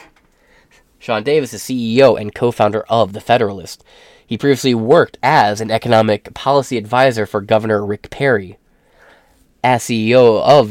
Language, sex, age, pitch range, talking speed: English, male, 20-39, 105-130 Hz, 135 wpm